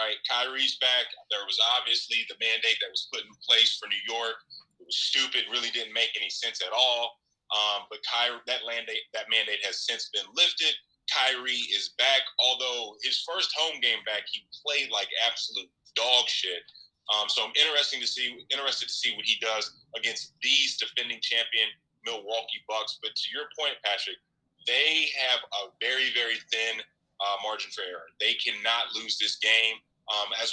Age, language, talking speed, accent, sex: 30-49, English, 180 wpm, American, male